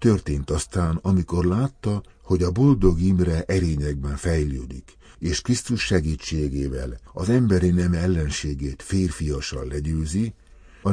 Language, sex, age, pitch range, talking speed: Hungarian, male, 60-79, 75-95 Hz, 110 wpm